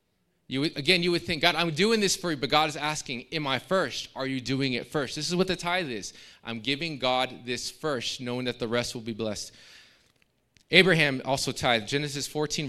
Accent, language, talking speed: American, English, 220 wpm